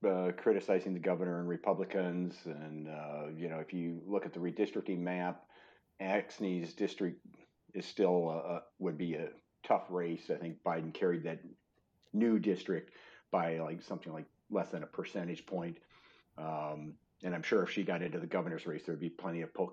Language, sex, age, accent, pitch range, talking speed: English, male, 50-69, American, 85-105 Hz, 190 wpm